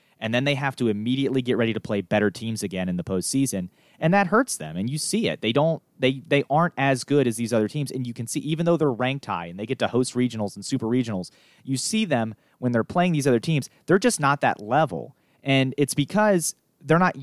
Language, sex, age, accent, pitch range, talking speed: English, male, 30-49, American, 115-145 Hz, 250 wpm